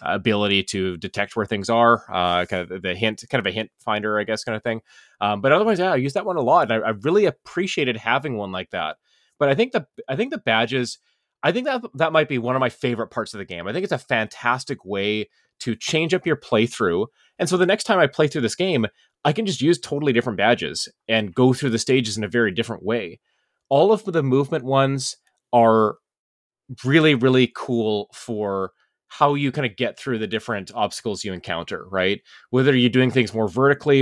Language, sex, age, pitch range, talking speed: English, male, 30-49, 105-135 Hz, 225 wpm